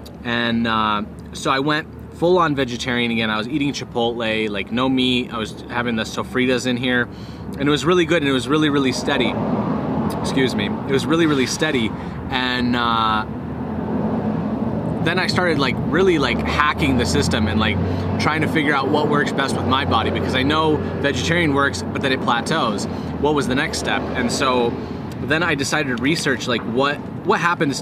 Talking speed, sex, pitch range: 190 wpm, male, 115-150 Hz